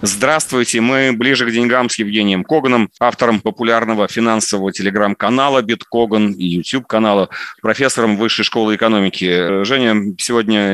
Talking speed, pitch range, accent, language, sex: 115 wpm, 100-120 Hz, native, Russian, male